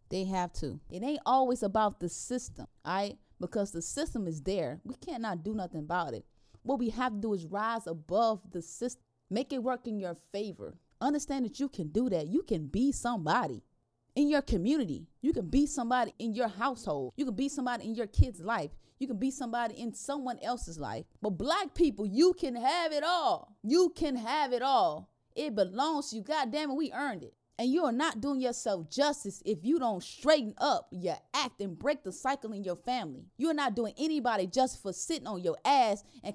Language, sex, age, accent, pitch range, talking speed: English, female, 20-39, American, 205-280 Hz, 215 wpm